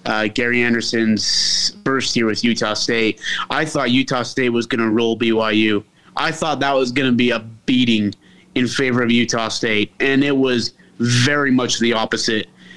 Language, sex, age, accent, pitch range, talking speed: English, male, 30-49, American, 120-145 Hz, 180 wpm